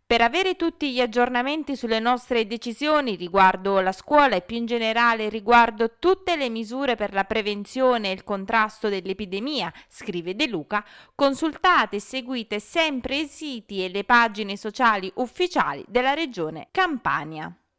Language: Italian